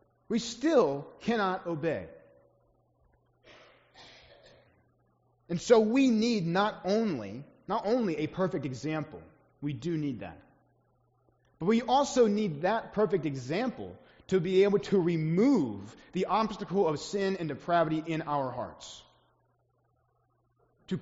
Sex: male